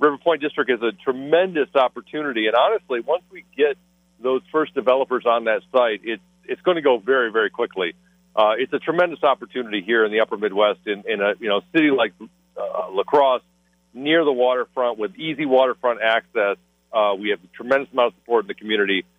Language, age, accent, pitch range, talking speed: English, 40-59, American, 115-165 Hz, 200 wpm